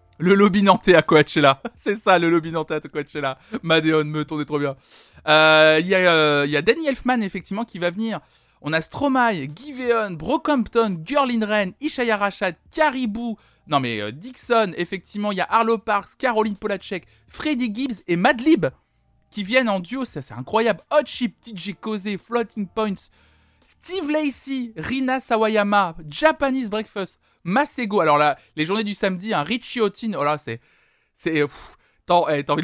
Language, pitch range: French, 160-240 Hz